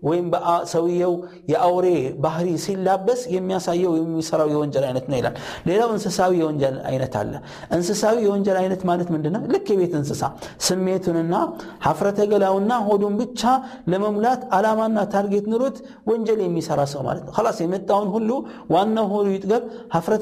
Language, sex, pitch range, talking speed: Amharic, male, 170-210 Hz, 105 wpm